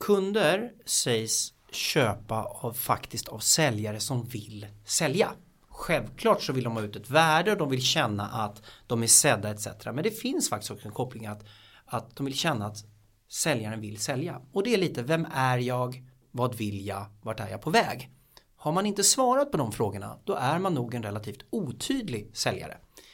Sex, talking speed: male, 190 wpm